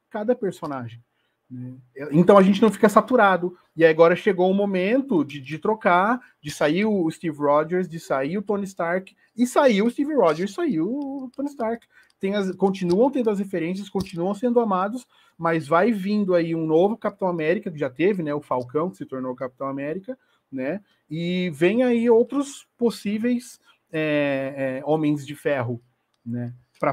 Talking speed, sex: 175 wpm, male